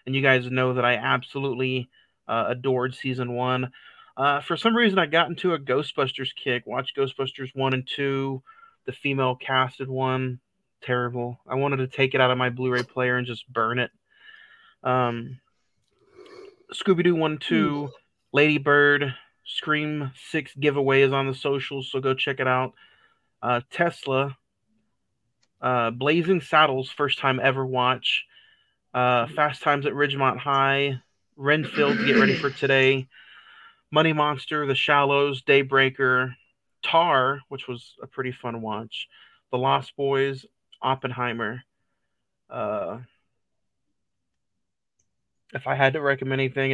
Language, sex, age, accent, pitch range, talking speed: English, male, 30-49, American, 125-145 Hz, 135 wpm